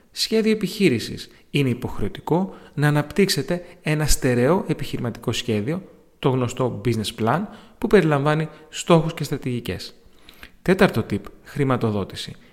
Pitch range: 115-160 Hz